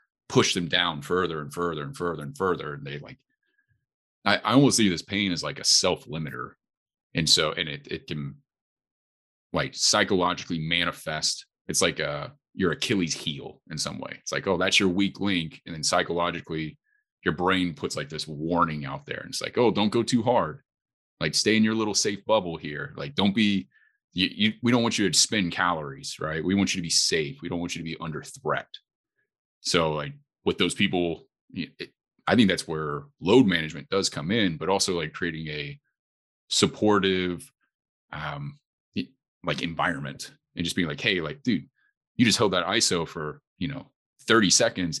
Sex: male